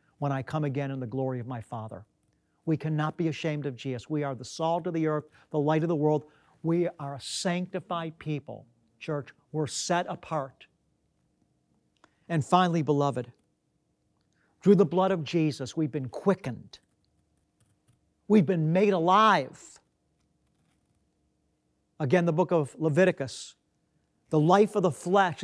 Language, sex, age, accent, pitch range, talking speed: English, male, 50-69, American, 140-185 Hz, 145 wpm